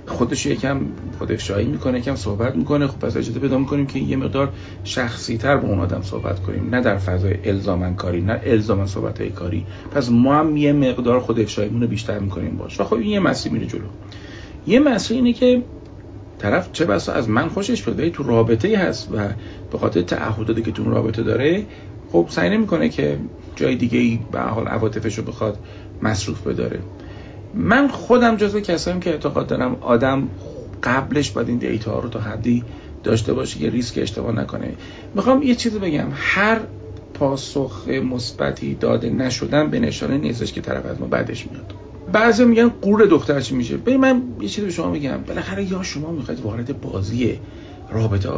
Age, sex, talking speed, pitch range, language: 40-59, male, 175 wpm, 105-150 Hz, Persian